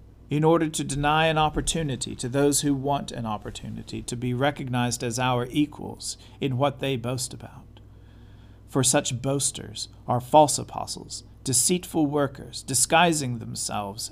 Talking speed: 140 wpm